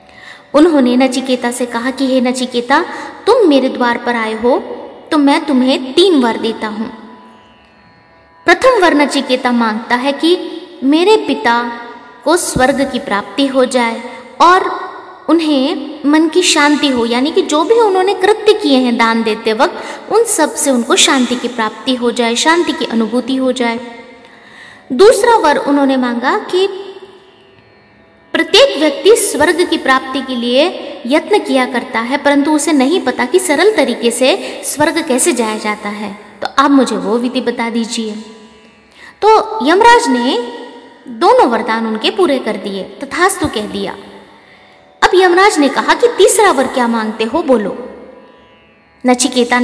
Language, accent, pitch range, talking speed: Hindi, native, 240-335 Hz, 150 wpm